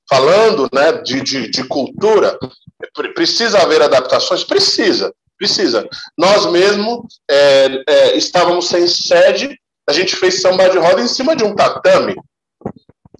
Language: Portuguese